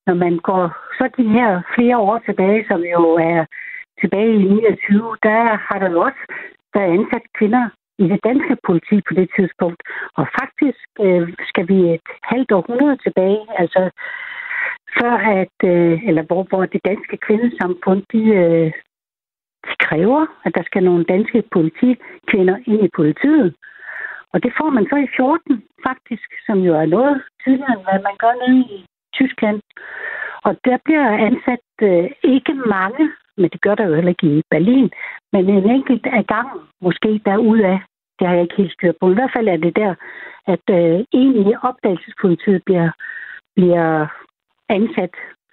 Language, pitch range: Danish, 180-240 Hz